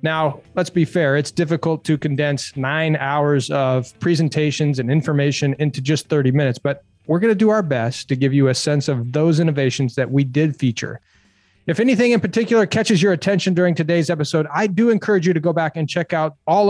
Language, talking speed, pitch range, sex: English, 205 wpm, 135-180 Hz, male